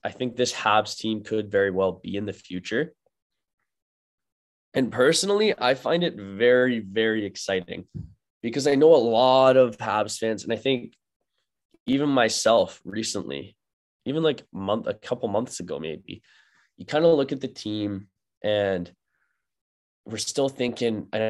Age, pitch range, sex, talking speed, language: 20-39, 100-120 Hz, male, 150 wpm, English